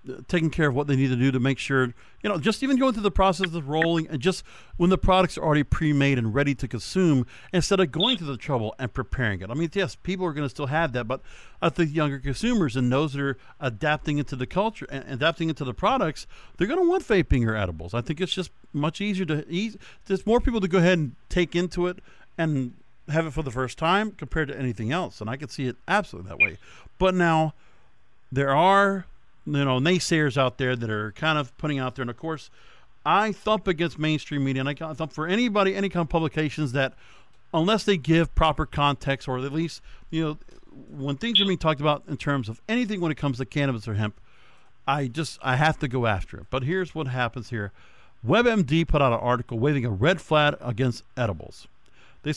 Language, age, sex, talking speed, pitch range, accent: English, 50-69, male, 230 wpm, 130-175 Hz, American